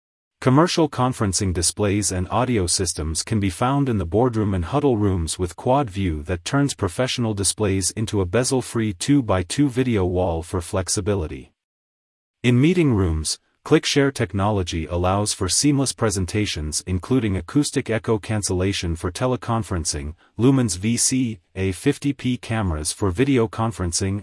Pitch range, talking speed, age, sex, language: 90-120 Hz, 130 wpm, 30-49, male, English